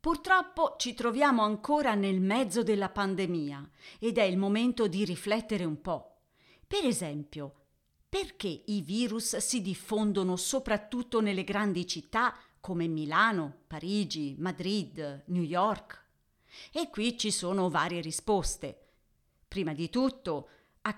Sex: female